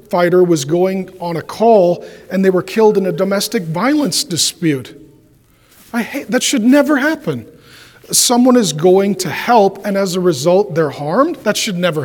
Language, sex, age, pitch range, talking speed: English, male, 40-59, 165-215 Hz, 175 wpm